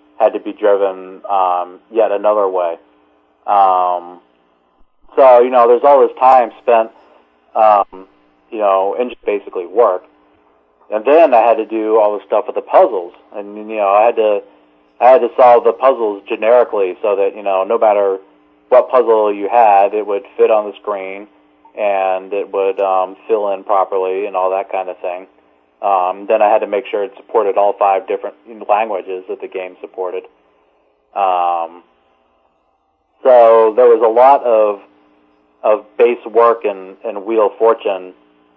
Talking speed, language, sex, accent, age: 170 wpm, English, male, American, 30-49